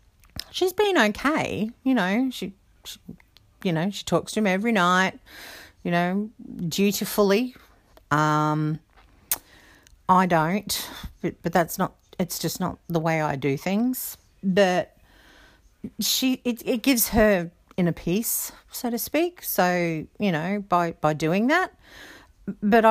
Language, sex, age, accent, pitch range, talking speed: English, female, 50-69, Australian, 175-245 Hz, 135 wpm